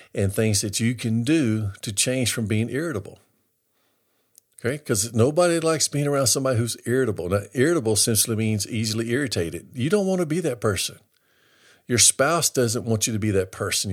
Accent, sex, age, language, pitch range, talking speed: American, male, 50-69, English, 105-130 Hz, 180 wpm